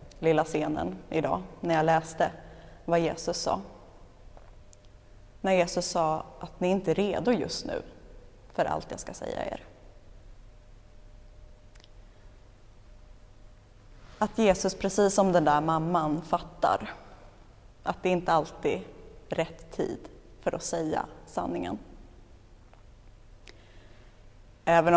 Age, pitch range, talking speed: 20-39, 100-170 Hz, 110 wpm